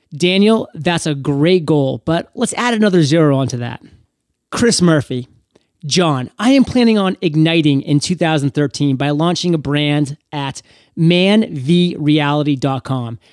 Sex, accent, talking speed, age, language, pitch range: male, American, 125 wpm, 30-49, English, 145-195 Hz